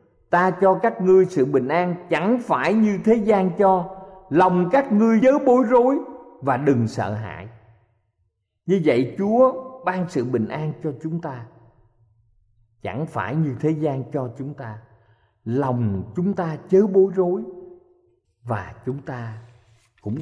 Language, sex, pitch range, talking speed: Vietnamese, male, 115-190 Hz, 150 wpm